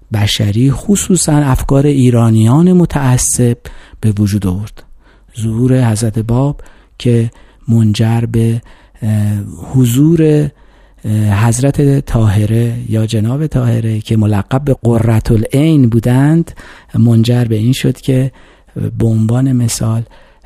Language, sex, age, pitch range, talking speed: Persian, male, 50-69, 105-130 Hz, 100 wpm